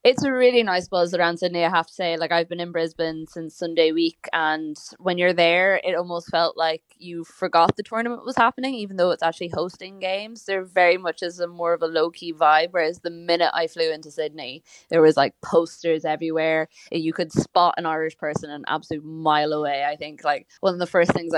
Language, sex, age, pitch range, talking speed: English, female, 20-39, 155-175 Hz, 220 wpm